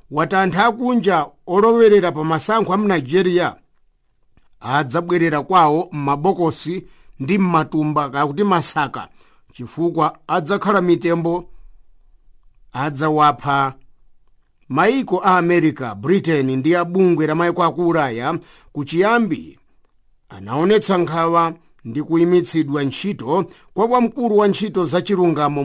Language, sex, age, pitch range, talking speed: English, male, 50-69, 150-190 Hz, 105 wpm